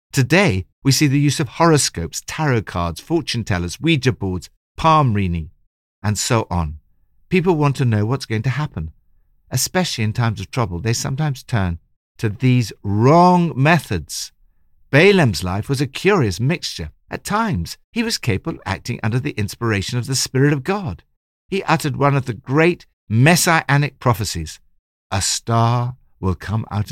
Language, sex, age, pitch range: English, male, 60-79, 85-145 Hz